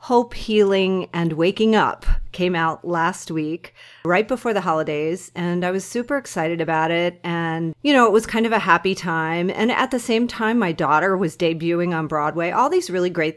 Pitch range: 170-220 Hz